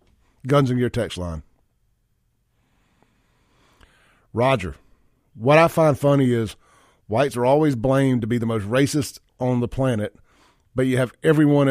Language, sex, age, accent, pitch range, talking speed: English, male, 40-59, American, 115-170 Hz, 140 wpm